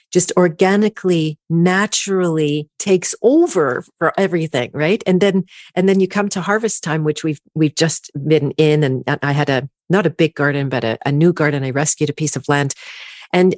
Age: 40-59